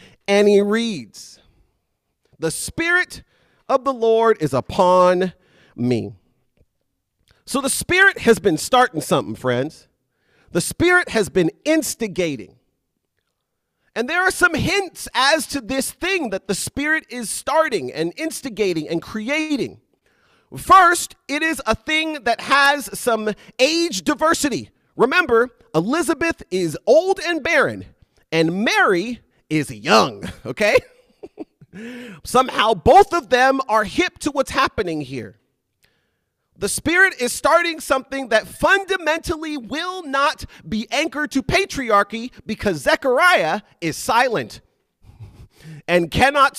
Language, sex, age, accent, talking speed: English, male, 40-59, American, 120 wpm